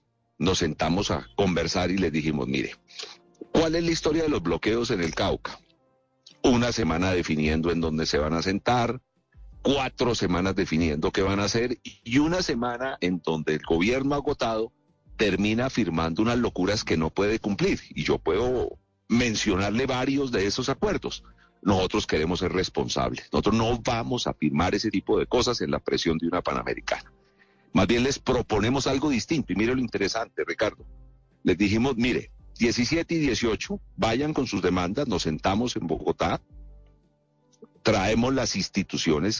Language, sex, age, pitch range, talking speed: Spanish, male, 40-59, 85-120 Hz, 160 wpm